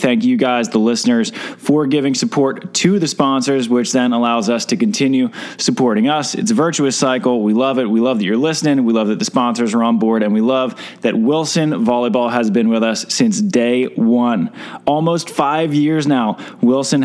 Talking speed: 200 wpm